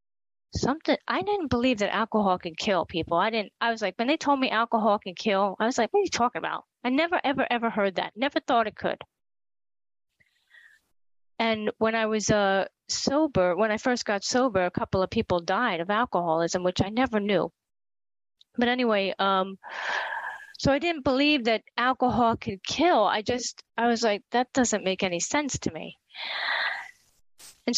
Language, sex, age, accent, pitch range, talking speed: English, female, 40-59, American, 200-245 Hz, 185 wpm